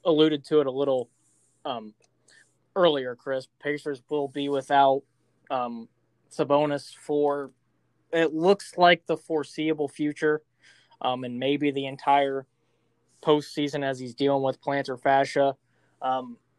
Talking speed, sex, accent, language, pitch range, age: 125 wpm, male, American, English, 130-150 Hz, 20-39